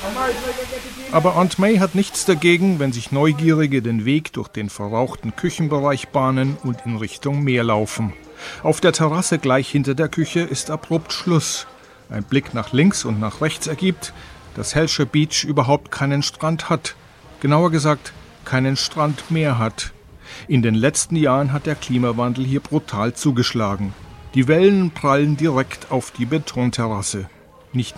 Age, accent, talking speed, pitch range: 40-59, German, 150 wpm, 120-155 Hz